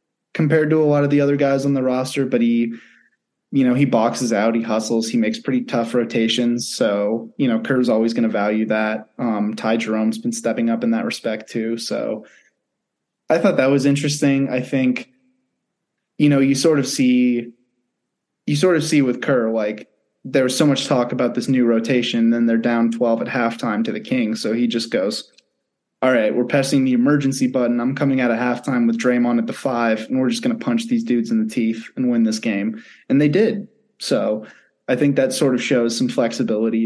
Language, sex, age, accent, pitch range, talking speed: English, male, 20-39, American, 115-150 Hz, 215 wpm